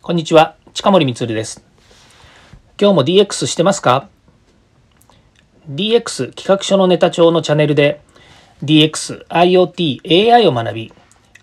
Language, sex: Japanese, male